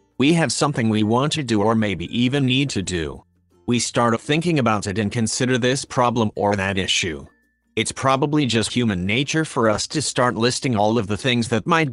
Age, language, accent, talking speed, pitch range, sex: 30-49, English, American, 205 wpm, 105-130 Hz, male